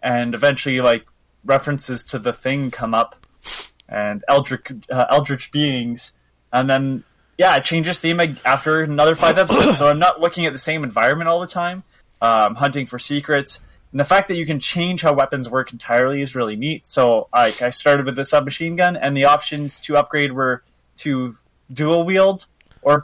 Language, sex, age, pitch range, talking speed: English, male, 20-39, 120-155 Hz, 190 wpm